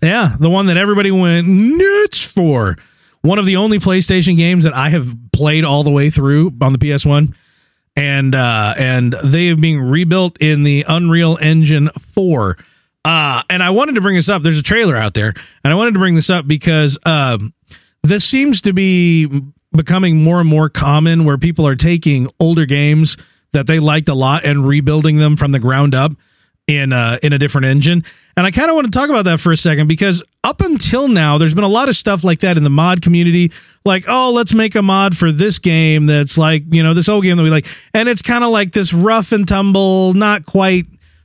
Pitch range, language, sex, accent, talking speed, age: 150-200 Hz, English, male, American, 220 wpm, 30-49